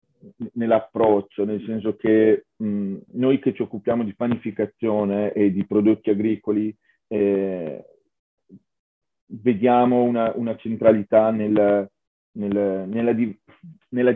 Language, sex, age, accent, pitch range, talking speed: Italian, male, 40-59, native, 105-120 Hz, 90 wpm